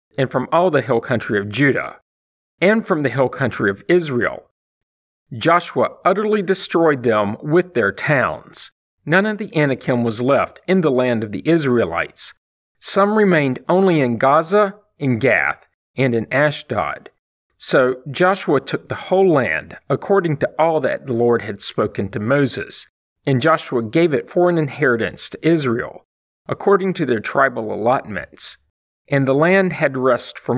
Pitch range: 115-175 Hz